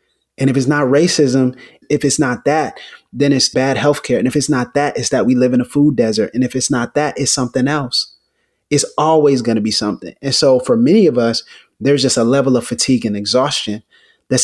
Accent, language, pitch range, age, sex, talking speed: American, English, 120-145 Hz, 30-49, male, 235 wpm